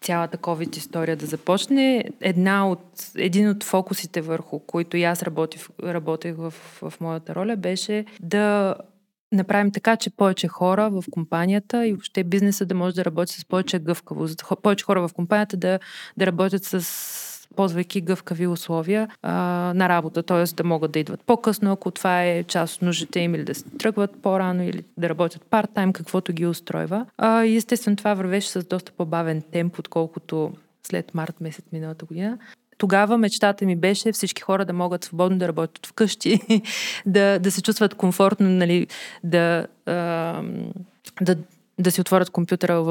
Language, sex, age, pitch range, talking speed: Bulgarian, female, 20-39, 170-200 Hz, 155 wpm